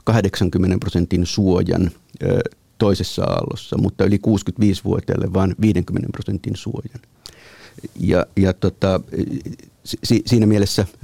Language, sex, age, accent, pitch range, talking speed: Finnish, male, 50-69, native, 95-105 Hz, 90 wpm